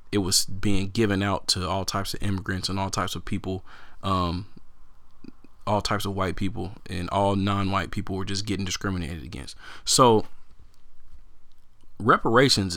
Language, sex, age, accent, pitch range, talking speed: English, male, 20-39, American, 90-105 Hz, 155 wpm